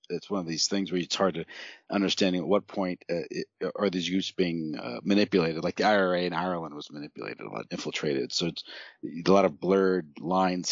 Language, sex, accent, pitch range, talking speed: English, male, American, 85-105 Hz, 215 wpm